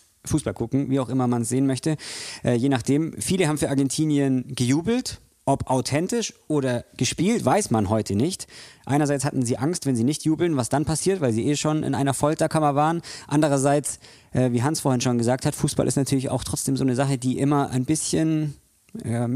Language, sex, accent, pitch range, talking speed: German, male, German, 125-150 Hz, 200 wpm